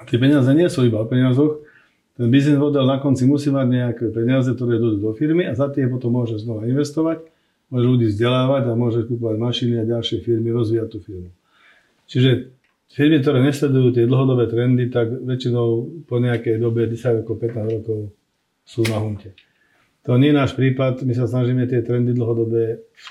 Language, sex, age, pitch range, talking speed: Slovak, male, 40-59, 115-125 Hz, 185 wpm